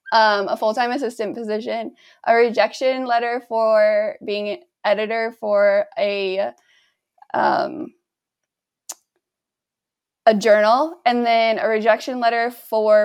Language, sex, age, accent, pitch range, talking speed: English, female, 20-39, American, 210-295 Hz, 100 wpm